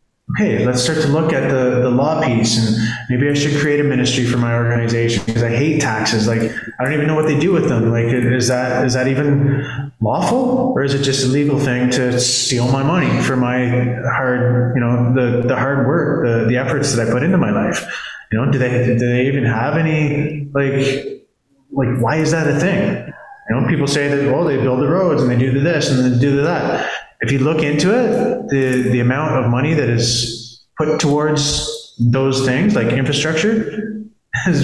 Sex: male